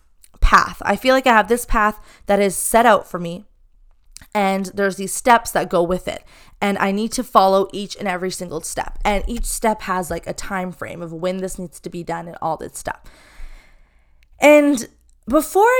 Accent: American